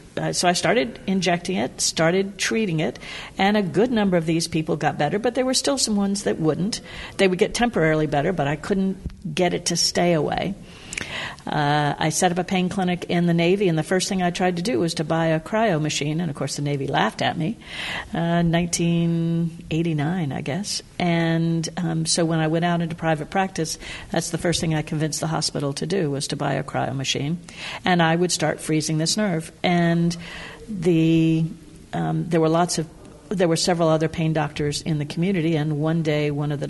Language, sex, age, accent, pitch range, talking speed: English, female, 60-79, American, 155-180 Hz, 215 wpm